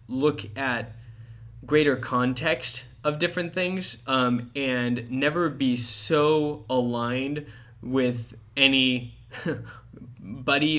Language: English